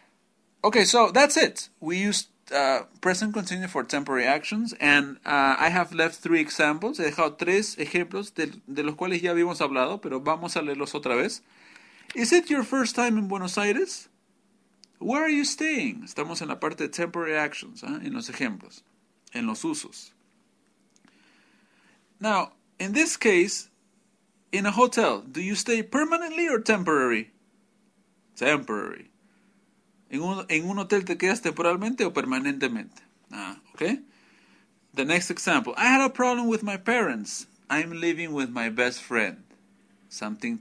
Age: 40-59